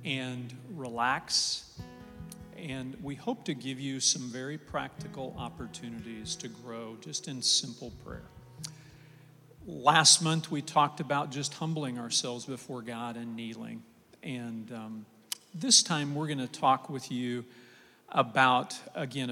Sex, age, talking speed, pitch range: male, 50-69, 130 wpm, 120-155 Hz